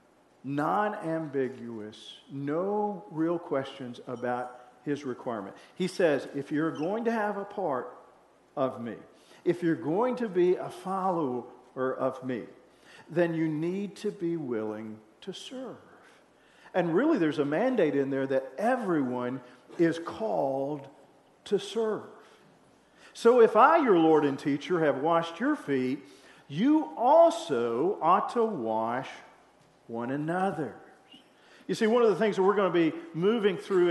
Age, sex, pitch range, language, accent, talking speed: 50-69, male, 150-210 Hz, English, American, 140 wpm